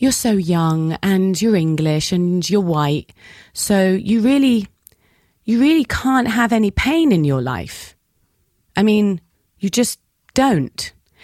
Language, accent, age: English, British, 30-49